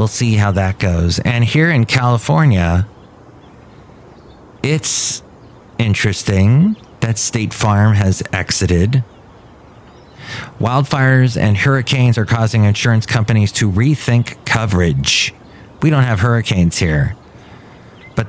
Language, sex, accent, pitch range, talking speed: English, male, American, 100-125 Hz, 105 wpm